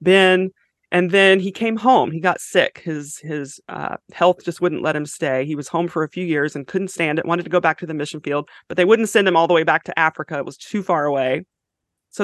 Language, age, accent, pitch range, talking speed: English, 30-49, American, 160-190 Hz, 265 wpm